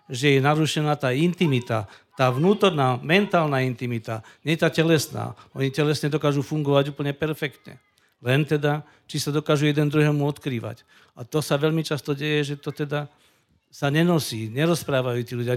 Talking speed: 155 wpm